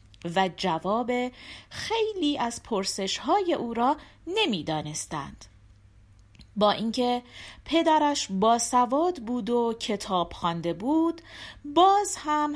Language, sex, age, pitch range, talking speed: Persian, female, 40-59, 195-315 Hz, 100 wpm